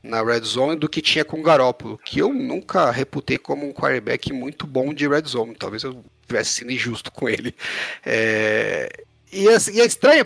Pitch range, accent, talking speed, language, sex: 130-175 Hz, Brazilian, 200 wpm, Portuguese, male